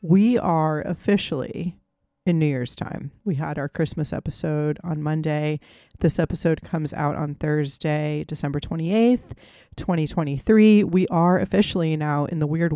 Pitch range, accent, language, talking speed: 150-180 Hz, American, English, 140 wpm